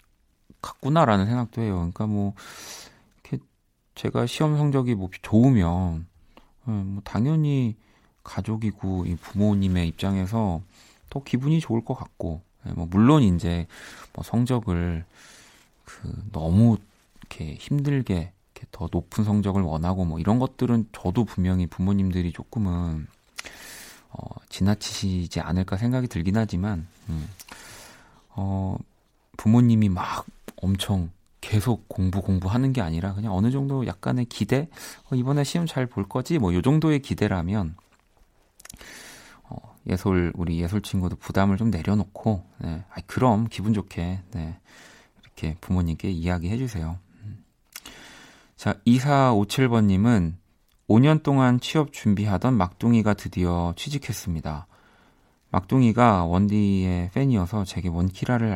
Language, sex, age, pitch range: Korean, male, 40-59, 90-120 Hz